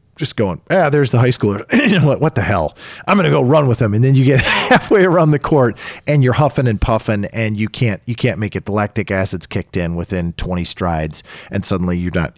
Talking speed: 235 wpm